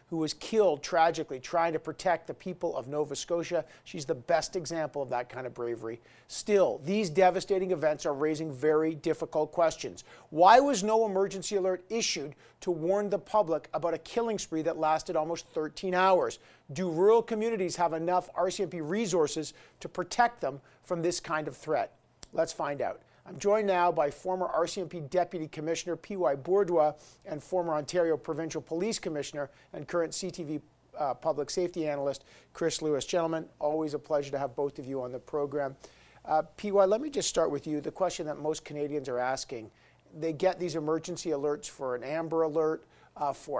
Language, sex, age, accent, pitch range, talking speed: English, male, 50-69, American, 150-180 Hz, 180 wpm